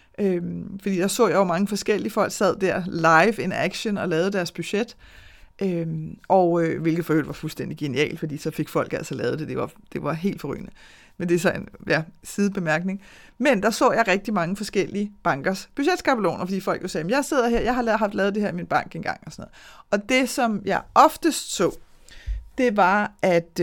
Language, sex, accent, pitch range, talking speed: Danish, female, native, 175-220 Hz, 210 wpm